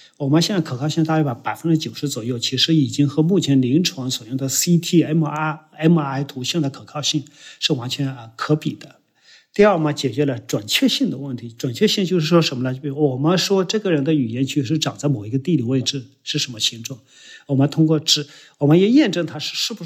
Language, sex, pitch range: Chinese, male, 135-170 Hz